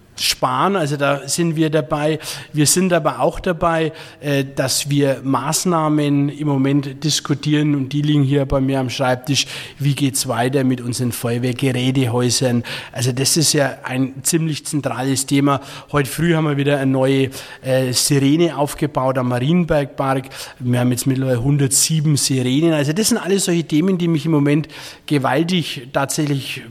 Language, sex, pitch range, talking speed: German, male, 130-155 Hz, 155 wpm